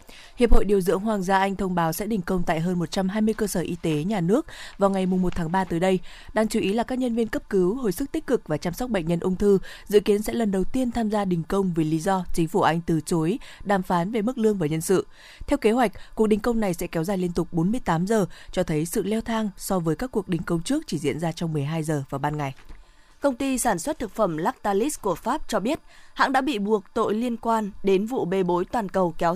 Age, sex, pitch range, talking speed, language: 20-39, female, 175-225 Hz, 275 wpm, Vietnamese